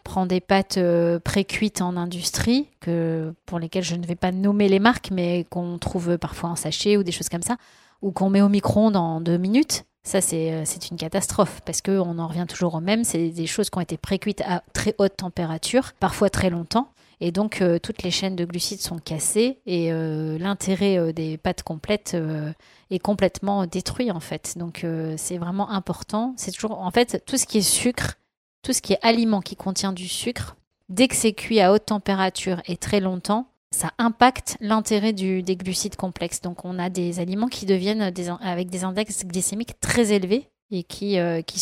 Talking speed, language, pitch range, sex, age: 200 wpm, French, 175-205 Hz, female, 30-49